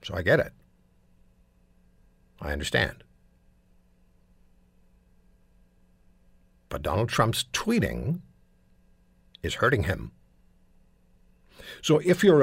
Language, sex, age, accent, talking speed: English, male, 60-79, American, 75 wpm